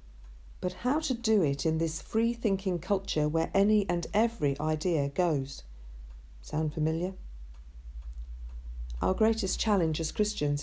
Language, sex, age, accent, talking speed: English, female, 50-69, British, 125 wpm